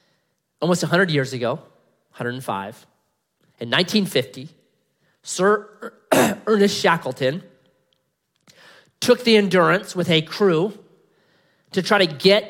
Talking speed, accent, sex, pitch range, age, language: 95 wpm, American, male, 160-205 Hz, 30-49, English